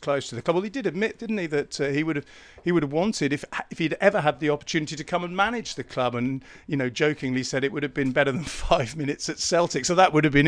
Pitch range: 135-160 Hz